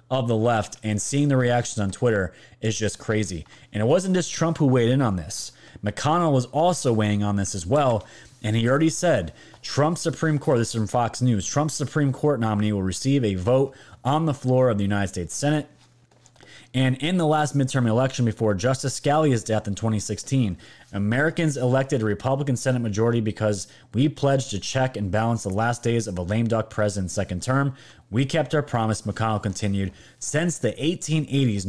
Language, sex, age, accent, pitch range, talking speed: English, male, 30-49, American, 105-135 Hz, 195 wpm